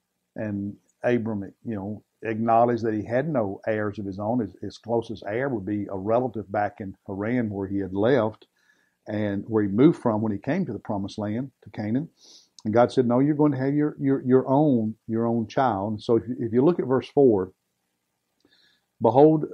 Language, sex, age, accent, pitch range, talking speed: English, male, 50-69, American, 105-125 Hz, 205 wpm